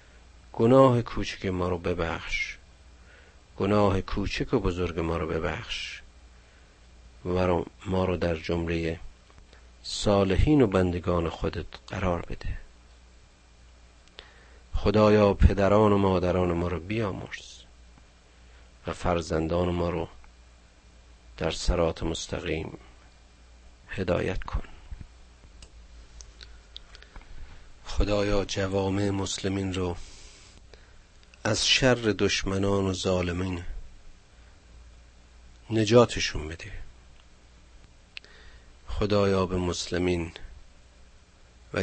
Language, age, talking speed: Persian, 50-69, 75 wpm